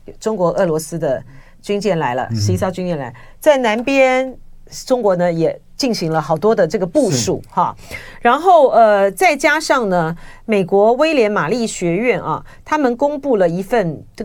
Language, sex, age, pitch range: Chinese, female, 40-59, 170-260 Hz